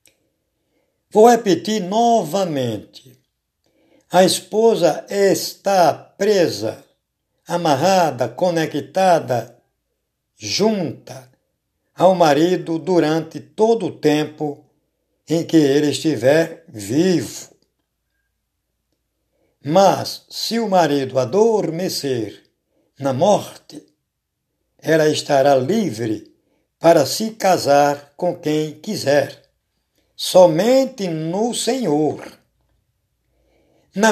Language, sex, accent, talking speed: Portuguese, male, Brazilian, 70 wpm